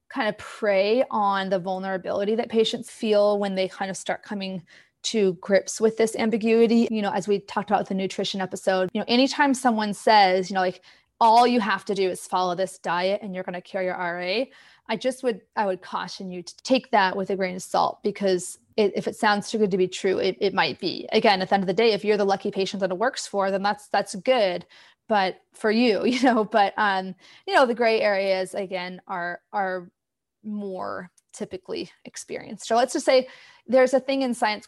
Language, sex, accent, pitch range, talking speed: English, female, American, 190-230 Hz, 225 wpm